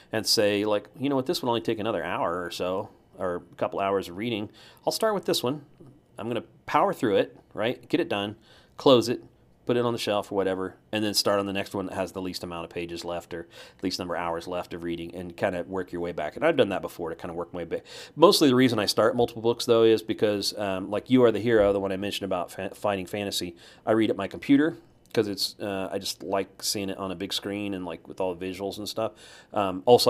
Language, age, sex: English, 40-59, male